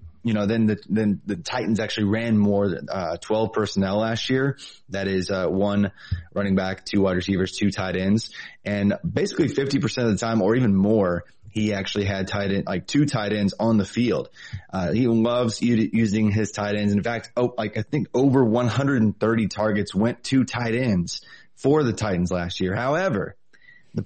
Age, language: 20-39, English